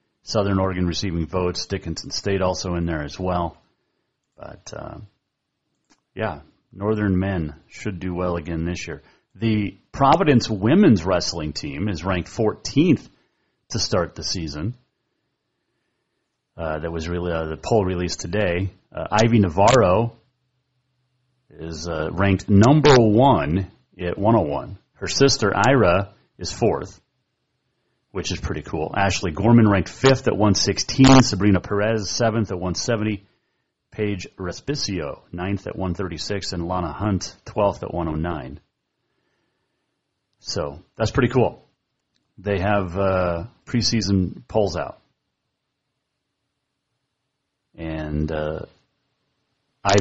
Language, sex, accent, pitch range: English, male, American, 85-115 Hz